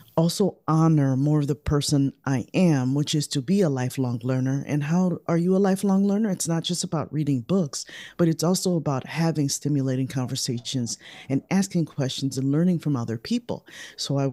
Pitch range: 130-165 Hz